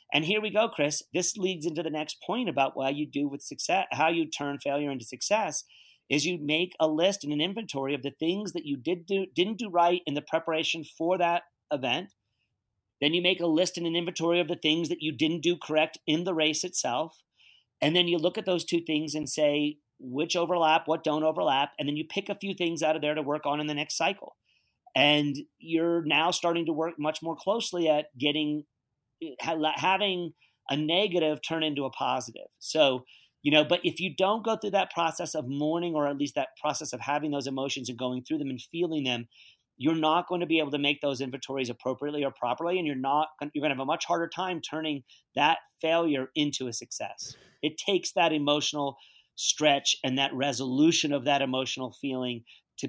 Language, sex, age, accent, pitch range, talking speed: English, male, 40-59, American, 140-170 Hz, 215 wpm